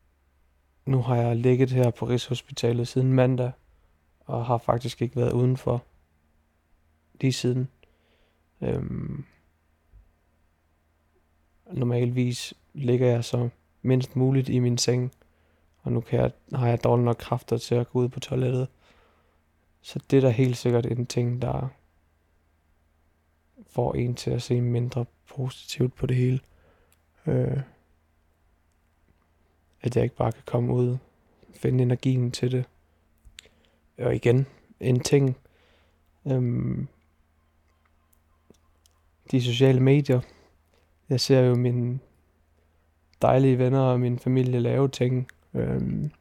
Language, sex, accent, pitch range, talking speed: Danish, male, native, 80-125 Hz, 120 wpm